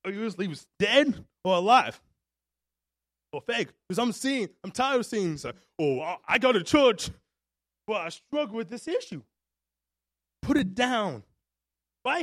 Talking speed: 145 wpm